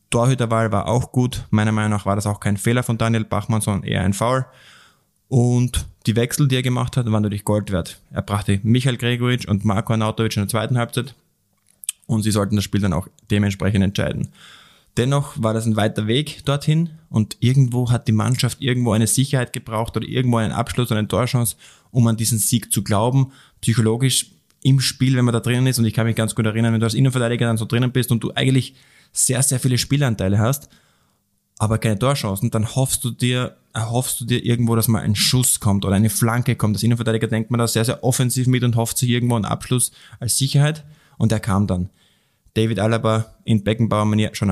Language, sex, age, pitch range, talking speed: German, male, 10-29, 110-125 Hz, 210 wpm